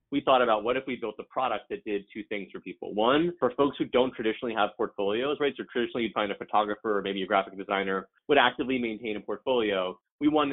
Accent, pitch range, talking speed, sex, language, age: American, 100-130 Hz, 240 wpm, male, English, 30-49